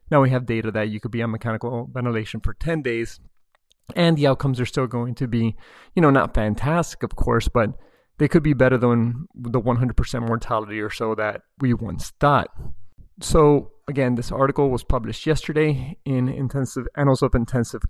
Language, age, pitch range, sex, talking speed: English, 30-49, 115-135 Hz, male, 185 wpm